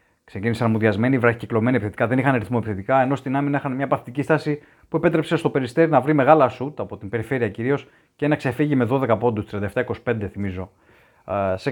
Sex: male